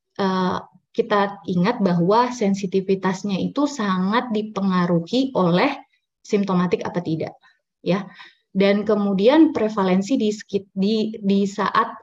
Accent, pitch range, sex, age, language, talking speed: native, 180-225 Hz, female, 20-39, Indonesian, 100 wpm